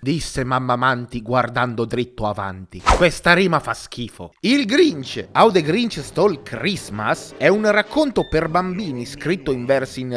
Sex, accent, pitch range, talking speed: male, native, 130-205 Hz, 155 wpm